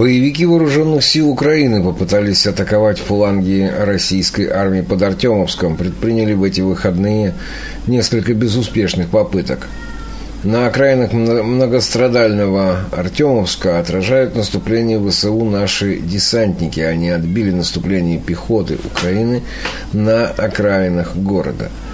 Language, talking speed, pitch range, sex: Russian, 95 wpm, 90-115 Hz, male